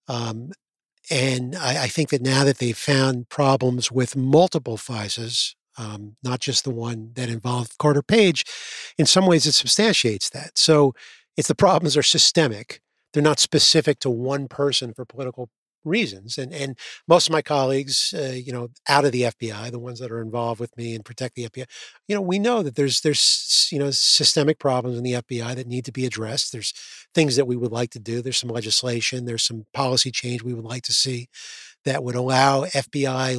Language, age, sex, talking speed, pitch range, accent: English, 40-59, male, 200 wpm, 120-145 Hz, American